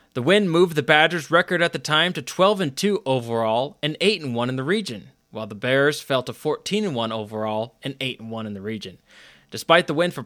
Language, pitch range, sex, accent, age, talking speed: English, 130-170 Hz, male, American, 20-39, 195 wpm